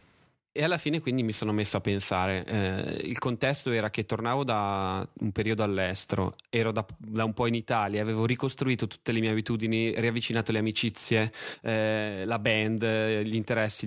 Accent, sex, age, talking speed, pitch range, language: native, male, 20-39, 175 wpm, 105-130 Hz, Italian